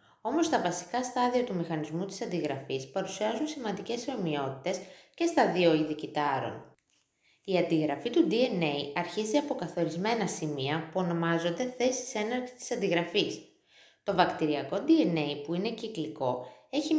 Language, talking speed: Greek, 130 wpm